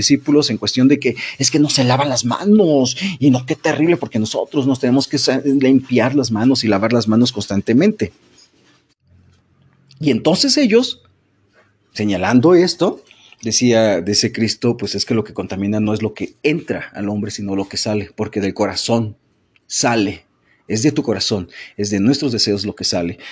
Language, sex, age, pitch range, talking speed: Spanish, male, 40-59, 110-160 Hz, 180 wpm